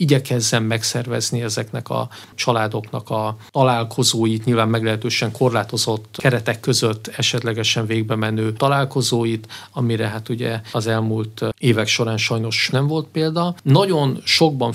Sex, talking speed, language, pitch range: male, 120 wpm, Hungarian, 110-130 Hz